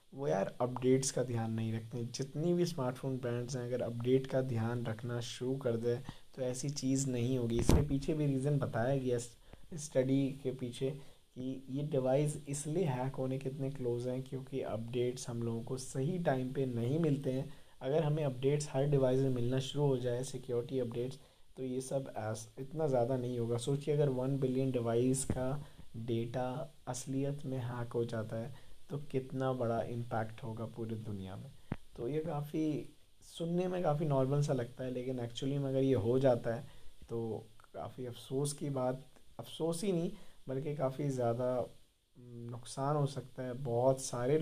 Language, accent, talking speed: Hindi, native, 175 wpm